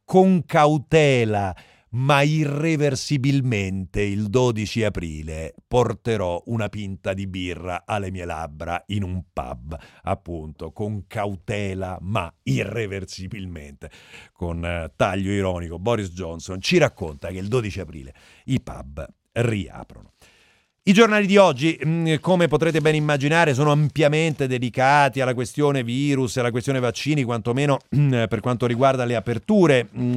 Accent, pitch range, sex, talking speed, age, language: native, 100-140 Hz, male, 120 wpm, 40-59, Italian